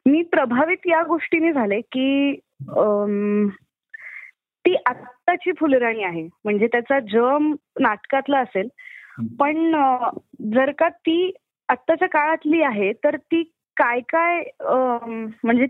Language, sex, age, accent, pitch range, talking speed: Marathi, female, 20-39, native, 220-300 Hz, 105 wpm